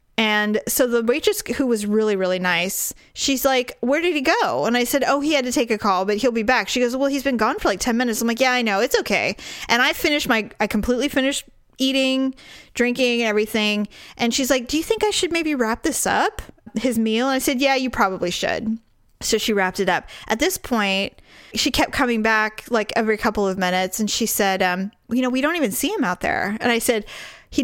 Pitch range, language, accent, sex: 215-275 Hz, English, American, female